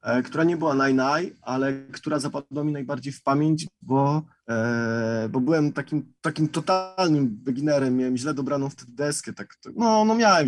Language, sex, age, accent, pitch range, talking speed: Polish, male, 20-39, native, 115-140 Hz, 155 wpm